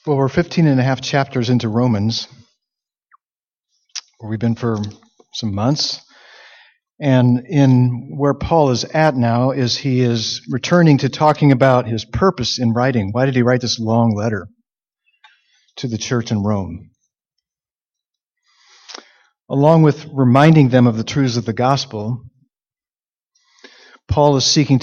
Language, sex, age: English, male, 40-59